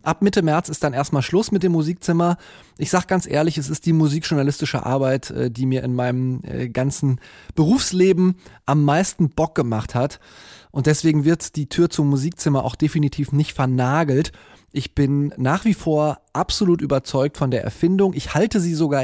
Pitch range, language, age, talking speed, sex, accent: 130-160 Hz, German, 20-39, 175 wpm, male, German